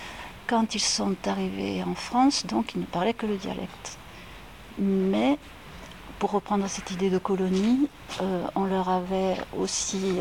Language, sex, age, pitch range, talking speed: French, female, 60-79, 180-210 Hz, 155 wpm